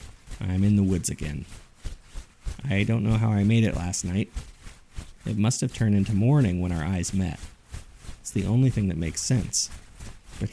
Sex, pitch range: male, 90-115 Hz